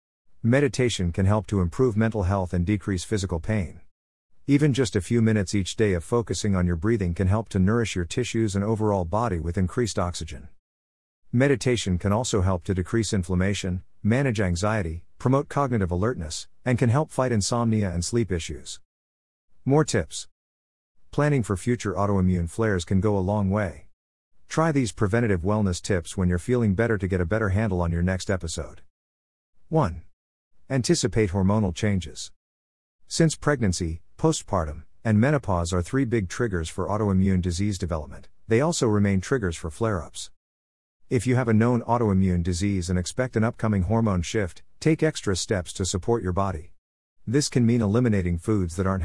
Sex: male